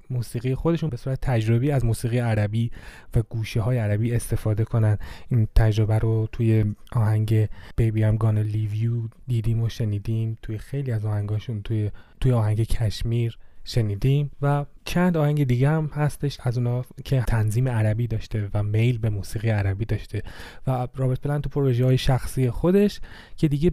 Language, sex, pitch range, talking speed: Persian, male, 110-135 Hz, 160 wpm